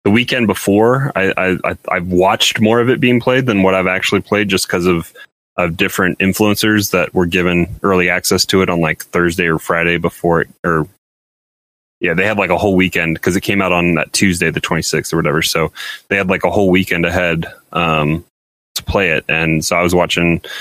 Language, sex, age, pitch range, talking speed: English, male, 20-39, 85-100 Hz, 220 wpm